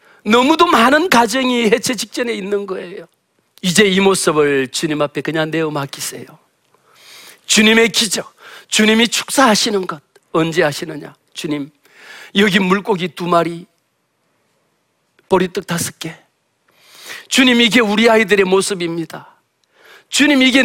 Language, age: Korean, 40-59